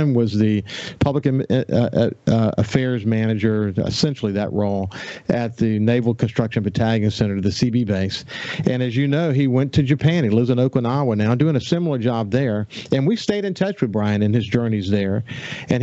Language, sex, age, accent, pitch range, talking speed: English, male, 50-69, American, 110-140 Hz, 185 wpm